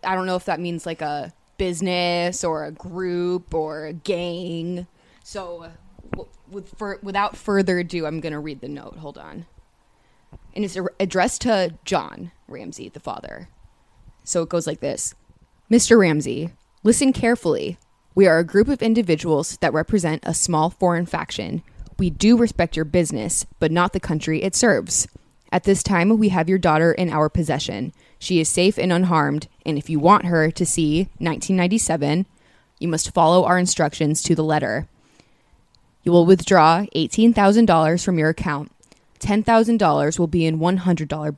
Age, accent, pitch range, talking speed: 20-39, American, 160-190 Hz, 160 wpm